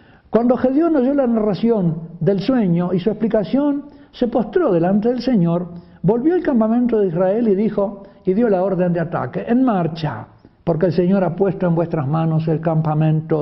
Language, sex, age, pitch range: Spanish, male, 60-79, 185-245 Hz